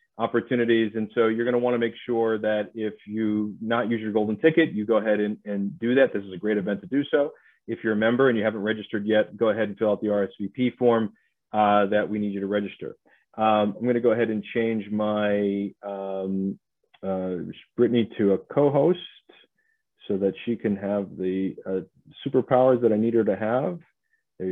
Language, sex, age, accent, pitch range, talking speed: English, male, 40-59, American, 105-125 Hz, 205 wpm